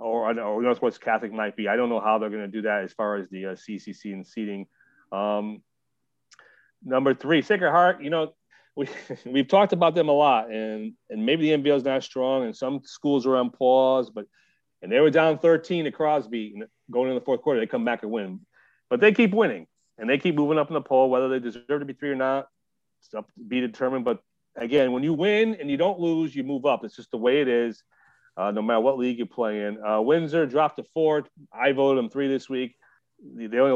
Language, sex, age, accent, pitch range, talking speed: English, male, 30-49, American, 110-145 Hz, 240 wpm